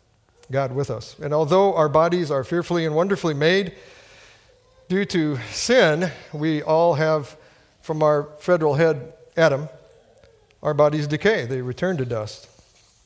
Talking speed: 140 wpm